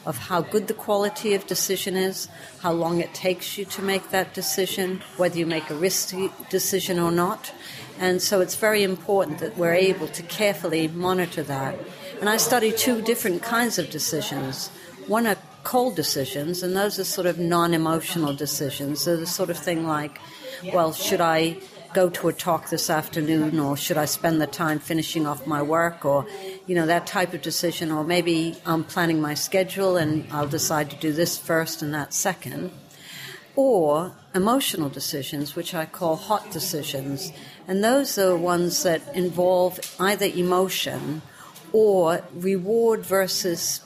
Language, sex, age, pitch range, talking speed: English, female, 50-69, 160-190 Hz, 170 wpm